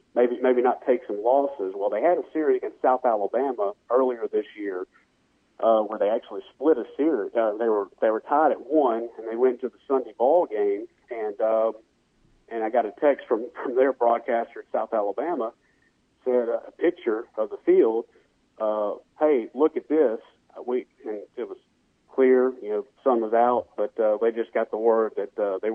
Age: 40-59